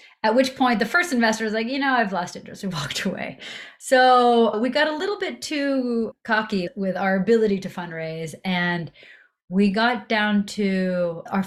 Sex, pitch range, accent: female, 185-245 Hz, American